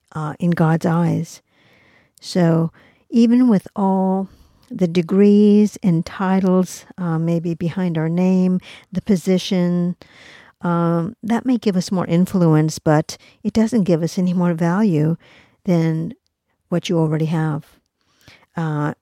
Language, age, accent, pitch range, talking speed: English, 50-69, American, 160-185 Hz, 125 wpm